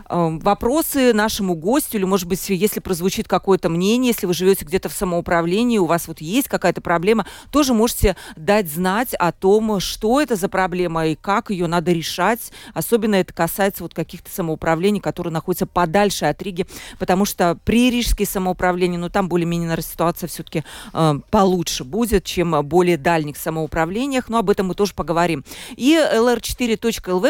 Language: Russian